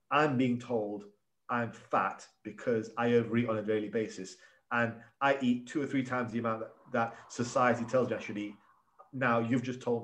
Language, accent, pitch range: English, British, 110-130 Hz